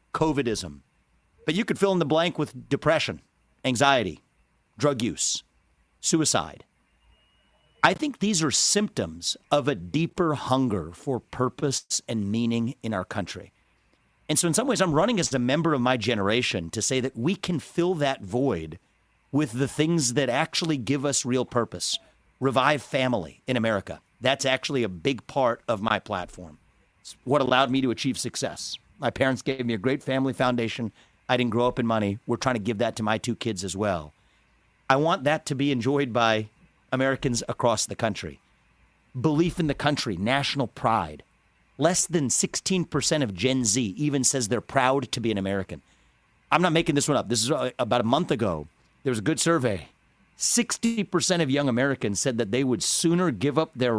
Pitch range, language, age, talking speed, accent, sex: 110-145 Hz, English, 40-59, 180 wpm, American, male